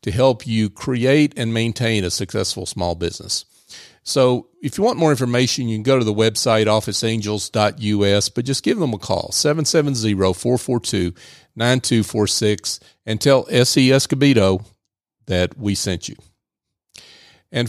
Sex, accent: male, American